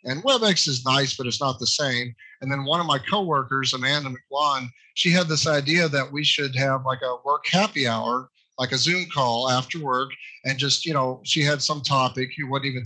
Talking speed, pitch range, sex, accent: 220 wpm, 130-160 Hz, male, American